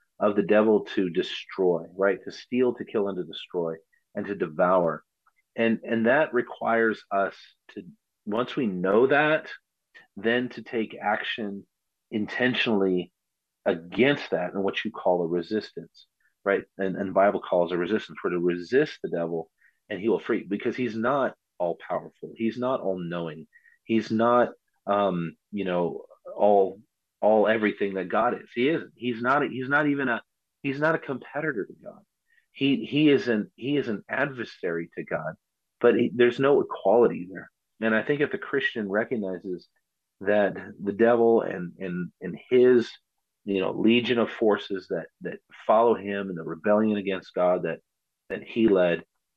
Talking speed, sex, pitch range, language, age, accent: 165 wpm, male, 90-120 Hz, English, 40-59, American